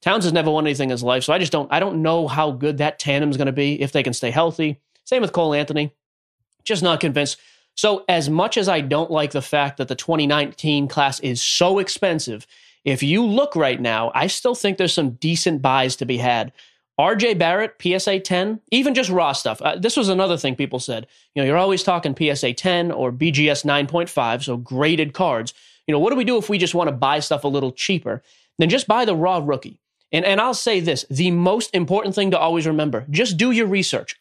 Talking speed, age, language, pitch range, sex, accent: 230 wpm, 30-49, English, 145-185 Hz, male, American